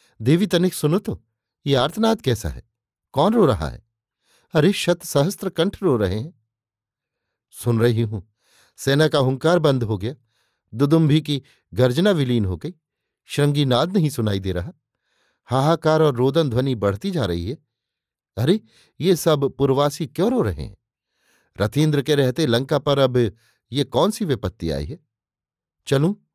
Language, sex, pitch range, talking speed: Hindi, male, 120-150 Hz, 155 wpm